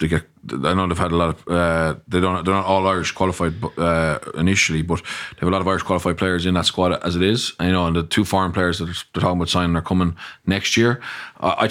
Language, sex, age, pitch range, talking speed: English, male, 20-39, 90-105 Hz, 270 wpm